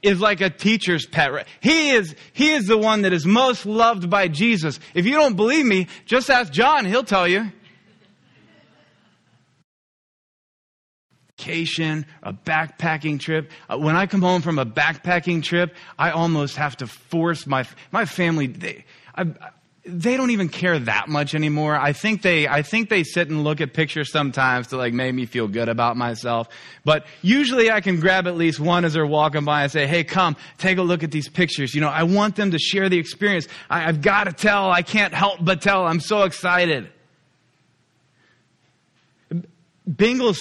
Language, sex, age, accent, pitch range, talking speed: English, male, 20-39, American, 155-200 Hz, 175 wpm